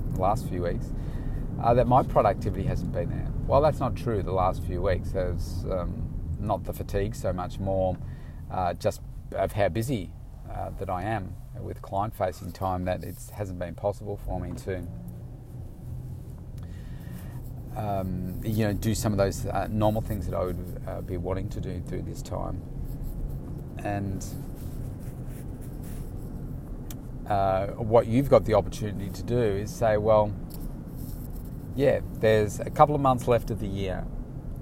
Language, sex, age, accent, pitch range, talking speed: English, male, 30-49, Australian, 95-120 Hz, 155 wpm